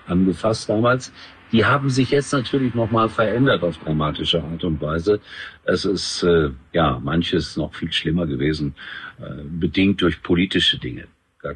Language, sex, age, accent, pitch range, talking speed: German, male, 50-69, German, 80-110 Hz, 150 wpm